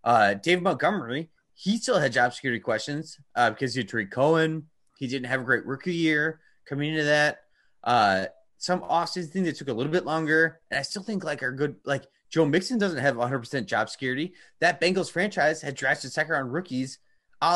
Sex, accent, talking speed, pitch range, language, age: male, American, 200 wpm, 135-185 Hz, English, 30-49